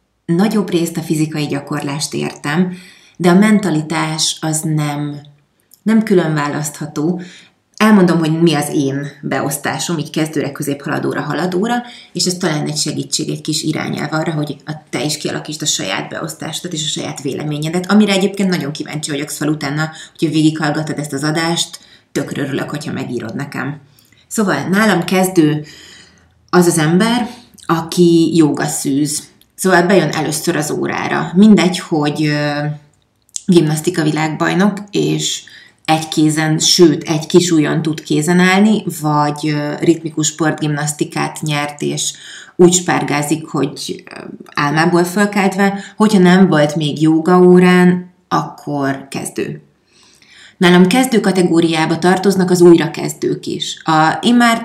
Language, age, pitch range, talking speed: Hungarian, 30-49, 150-180 Hz, 125 wpm